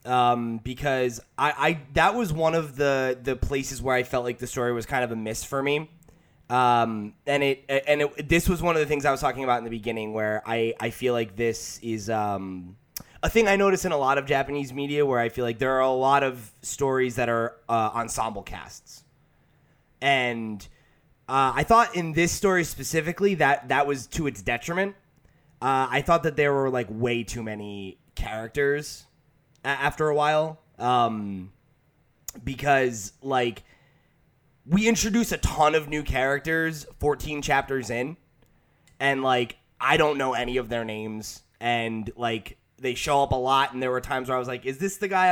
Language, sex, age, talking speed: English, male, 20-39, 190 wpm